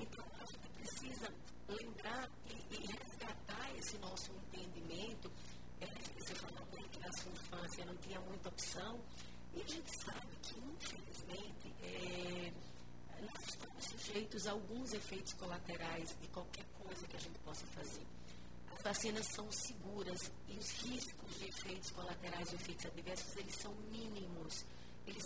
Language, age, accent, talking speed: Portuguese, 40-59, Brazilian, 140 wpm